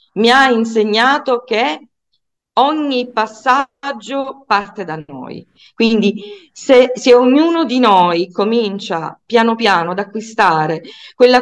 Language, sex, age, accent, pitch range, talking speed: Italian, female, 40-59, native, 175-230 Hz, 110 wpm